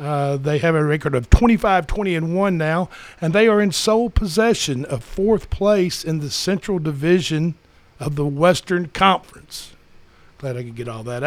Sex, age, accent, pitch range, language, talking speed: male, 60-79, American, 150-205 Hz, English, 165 wpm